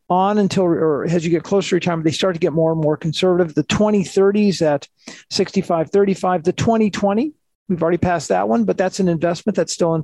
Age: 50-69